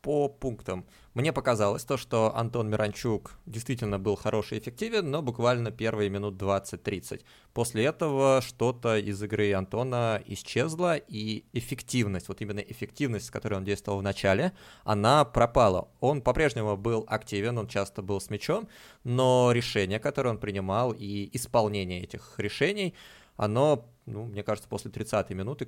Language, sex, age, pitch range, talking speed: Russian, male, 20-39, 100-120 Hz, 145 wpm